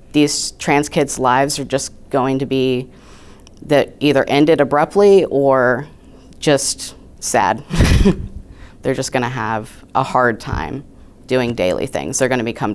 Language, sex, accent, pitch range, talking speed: English, female, American, 135-160 Hz, 135 wpm